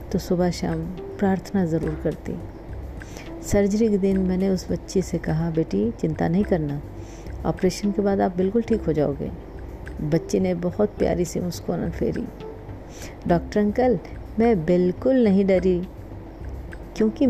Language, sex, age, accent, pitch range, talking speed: Hindi, female, 40-59, native, 155-205 Hz, 140 wpm